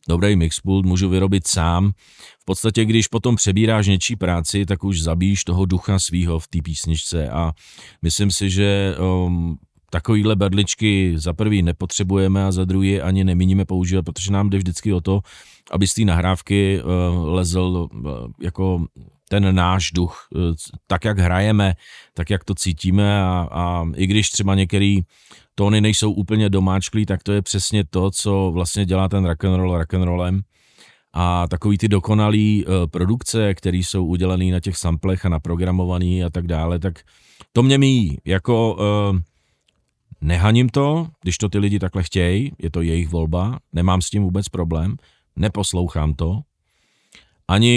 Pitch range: 90-100 Hz